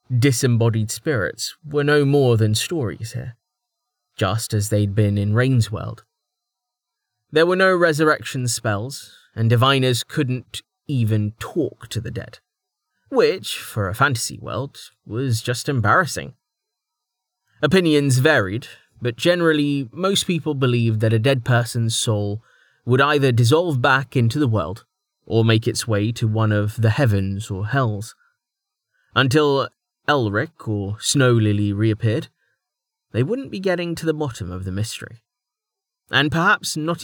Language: English